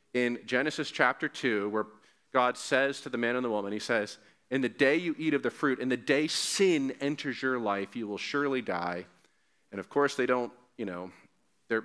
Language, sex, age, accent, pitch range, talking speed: English, male, 40-59, American, 105-150 Hz, 215 wpm